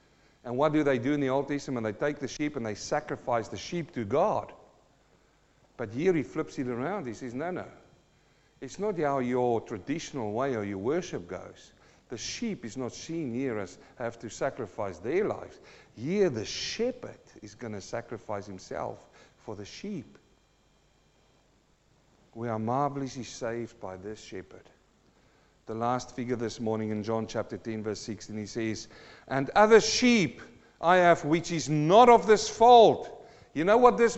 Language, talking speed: English, 170 wpm